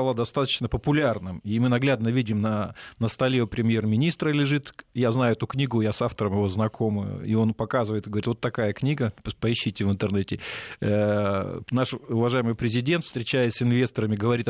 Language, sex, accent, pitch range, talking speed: Russian, male, native, 115-145 Hz, 160 wpm